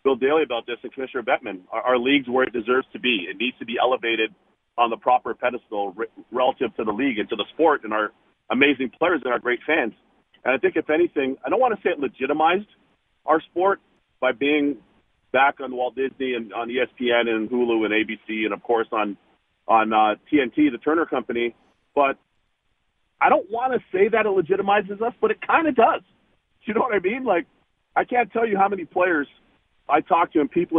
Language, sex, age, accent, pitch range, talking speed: English, male, 40-59, American, 130-195 Hz, 215 wpm